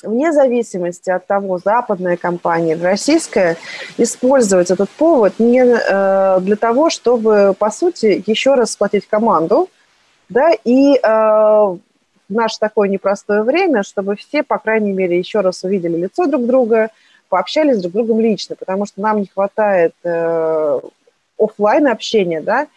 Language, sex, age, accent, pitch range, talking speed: Russian, female, 30-49, native, 185-230 Hz, 145 wpm